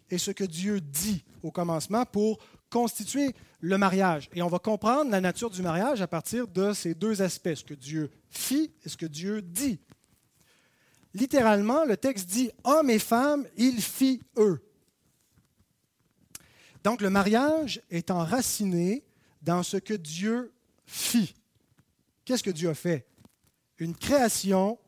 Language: French